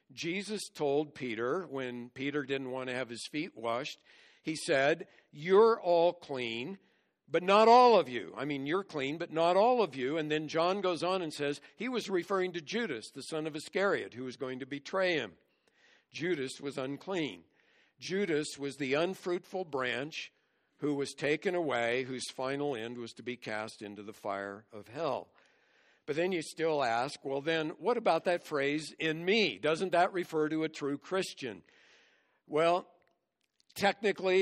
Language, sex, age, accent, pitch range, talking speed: English, male, 60-79, American, 135-175 Hz, 175 wpm